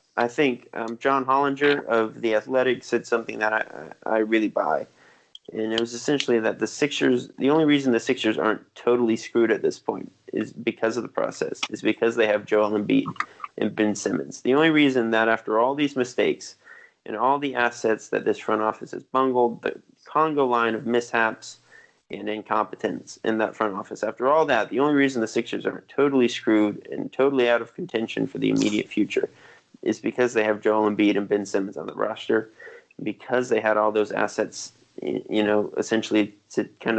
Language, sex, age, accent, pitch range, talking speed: English, male, 30-49, American, 110-140 Hz, 195 wpm